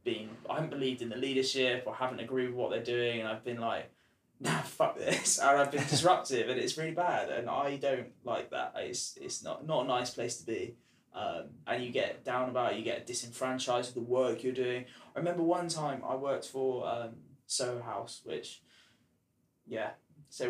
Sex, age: male, 20-39